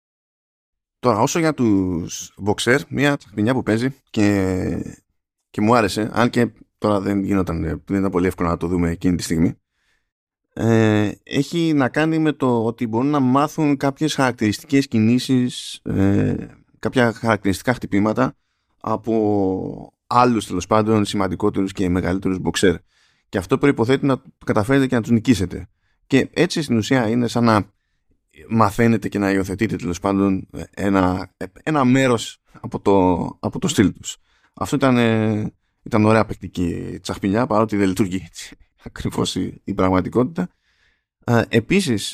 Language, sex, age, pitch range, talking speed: Greek, male, 20-39, 95-130 Hz, 140 wpm